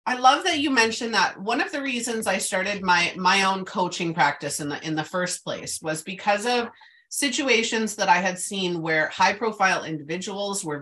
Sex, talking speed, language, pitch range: female, 200 wpm, English, 165-220 Hz